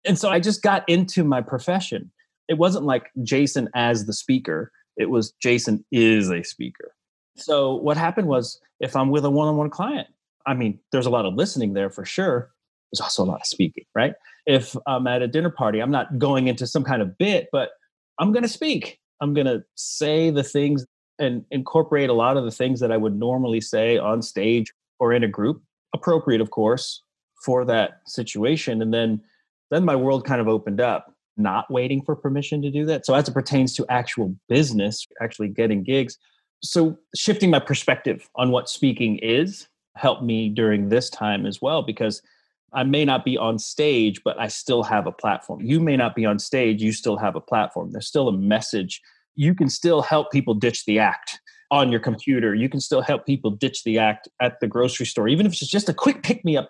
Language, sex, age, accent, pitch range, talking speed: English, male, 30-49, American, 115-150 Hz, 205 wpm